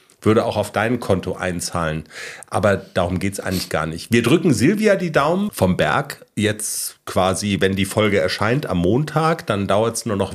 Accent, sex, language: German, male, German